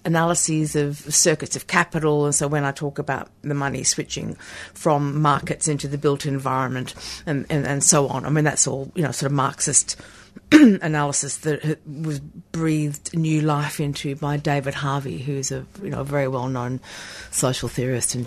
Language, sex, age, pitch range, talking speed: English, female, 50-69, 140-165 Hz, 180 wpm